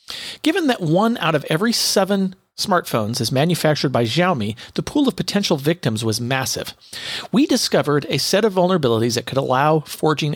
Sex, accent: male, American